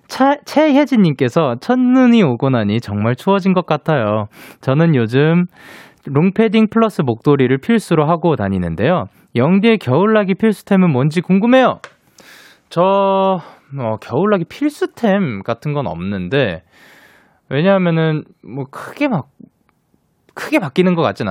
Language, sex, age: Korean, male, 20-39